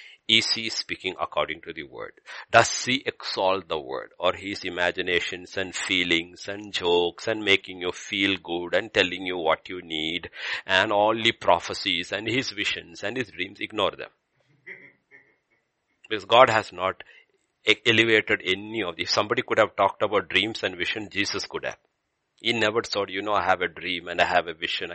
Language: English